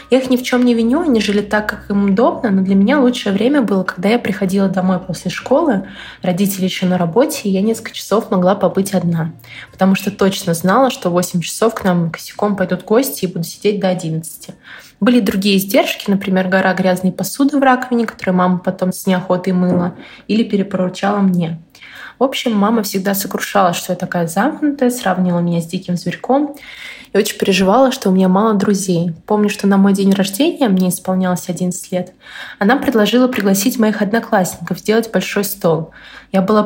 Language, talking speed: Russian, 185 wpm